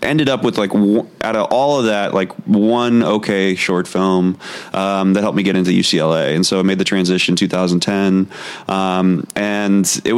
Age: 20-39